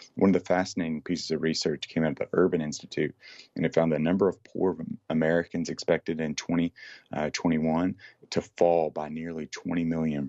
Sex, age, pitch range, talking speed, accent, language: male, 30-49, 75-85 Hz, 180 wpm, American, English